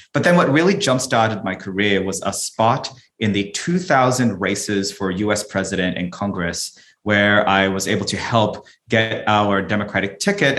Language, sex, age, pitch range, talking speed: English, male, 30-49, 95-115 Hz, 165 wpm